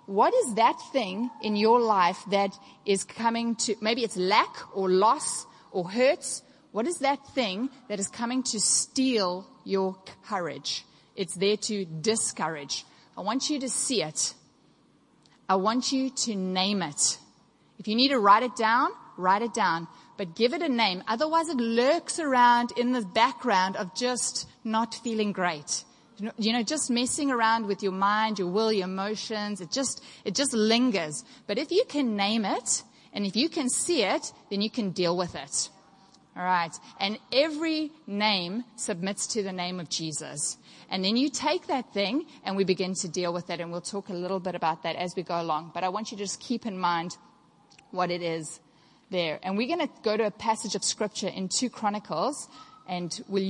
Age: 30-49